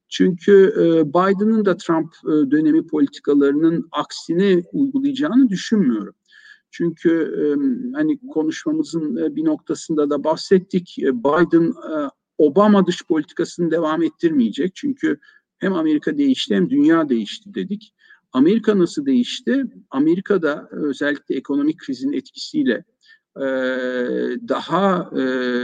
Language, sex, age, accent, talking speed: Turkish, male, 60-79, native, 110 wpm